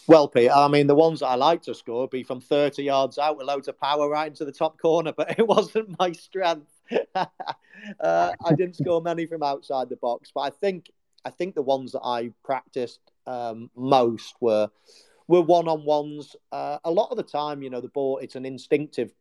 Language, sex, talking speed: English, male, 210 wpm